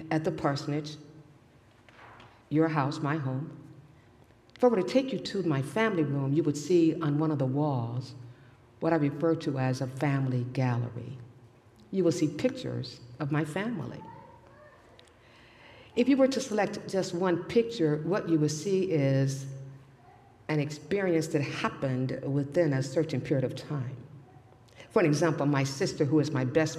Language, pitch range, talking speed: English, 130-165 Hz, 160 wpm